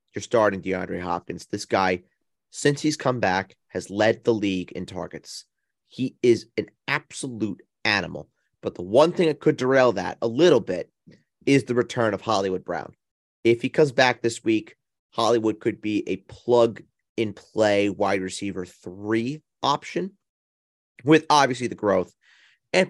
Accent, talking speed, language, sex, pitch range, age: American, 150 wpm, English, male, 95-135 Hz, 30-49